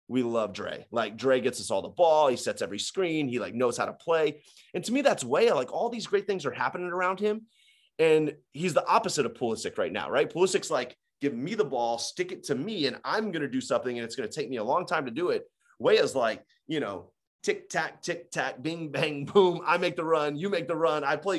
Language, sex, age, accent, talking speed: English, male, 30-49, American, 260 wpm